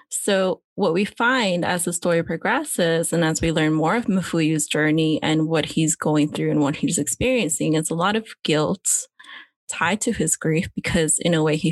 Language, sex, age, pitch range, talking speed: English, female, 20-39, 155-185 Hz, 200 wpm